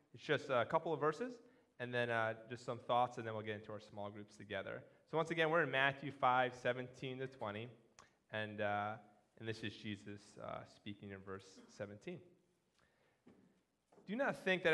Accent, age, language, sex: American, 20-39, English, male